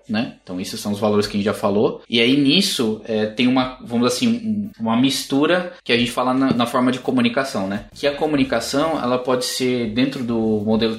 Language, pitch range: Portuguese, 115-140 Hz